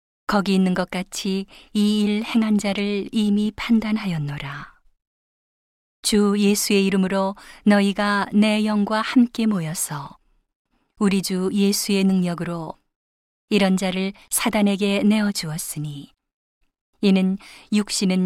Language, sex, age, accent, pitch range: Korean, female, 40-59, native, 180-210 Hz